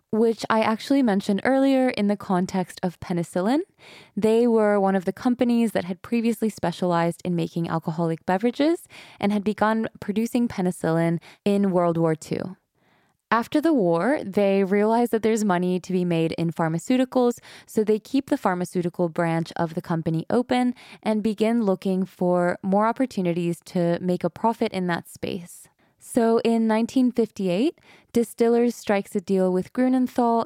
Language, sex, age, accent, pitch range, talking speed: English, female, 20-39, American, 175-230 Hz, 155 wpm